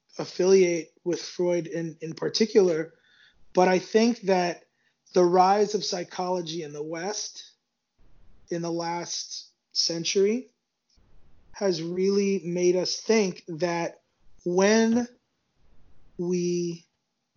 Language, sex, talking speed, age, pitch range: English, male, 100 wpm, 30-49, 170-205 Hz